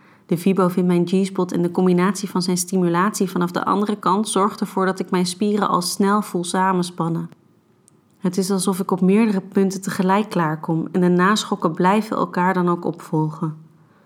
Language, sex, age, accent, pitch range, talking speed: Dutch, female, 30-49, Dutch, 165-190 Hz, 180 wpm